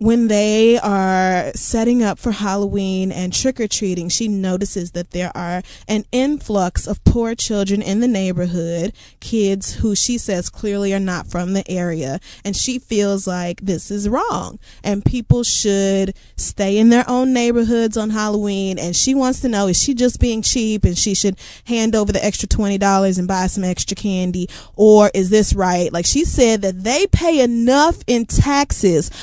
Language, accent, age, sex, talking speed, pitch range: English, American, 20-39, female, 175 wpm, 195-245 Hz